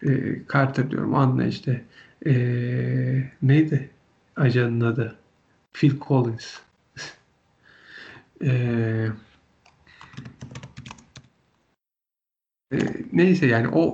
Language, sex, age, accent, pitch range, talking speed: Turkish, male, 50-69, native, 120-150 Hz, 65 wpm